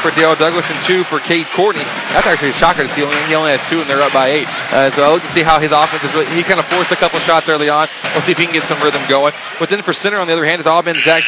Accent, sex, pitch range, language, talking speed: American, male, 140-170 Hz, English, 345 wpm